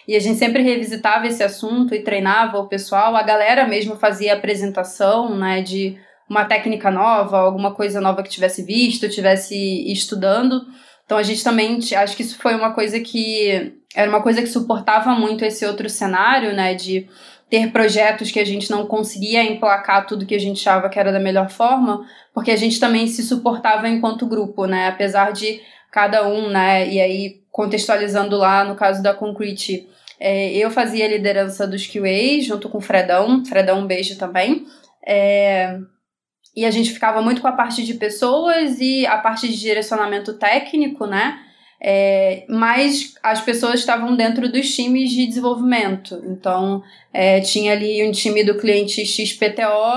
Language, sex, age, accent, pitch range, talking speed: Portuguese, female, 20-39, Brazilian, 200-230 Hz, 170 wpm